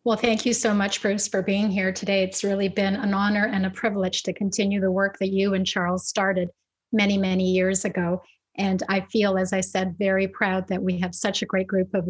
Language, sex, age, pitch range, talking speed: English, female, 30-49, 190-215 Hz, 235 wpm